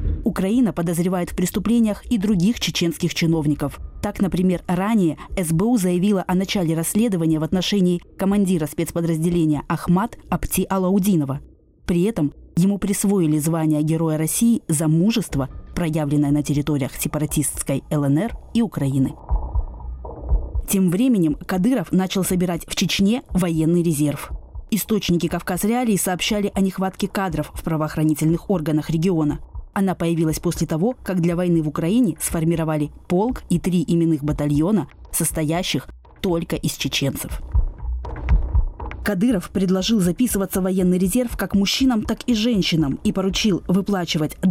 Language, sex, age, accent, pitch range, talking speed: Russian, female, 20-39, native, 155-200 Hz, 125 wpm